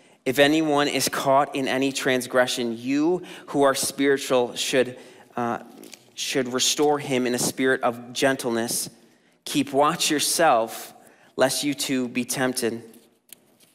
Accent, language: American, English